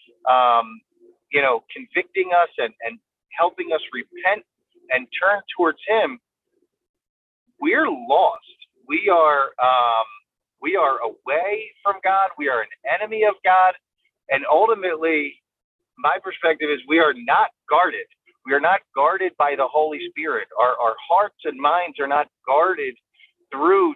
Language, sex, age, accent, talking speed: English, male, 40-59, American, 140 wpm